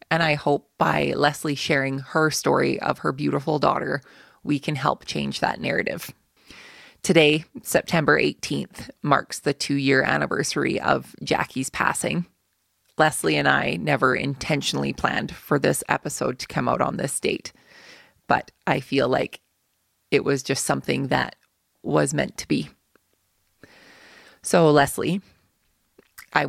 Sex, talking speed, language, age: female, 135 wpm, English, 20-39